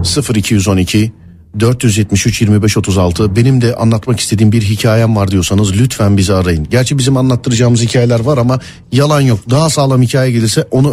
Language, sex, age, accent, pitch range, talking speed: Turkish, male, 50-69, native, 100-145 Hz, 135 wpm